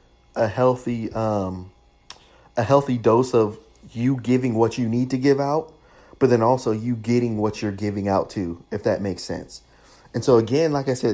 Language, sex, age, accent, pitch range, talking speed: English, male, 30-49, American, 100-130 Hz, 190 wpm